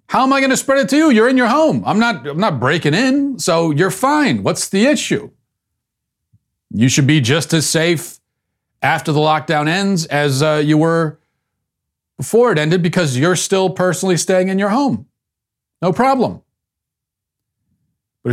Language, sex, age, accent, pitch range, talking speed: English, male, 40-59, American, 120-185 Hz, 170 wpm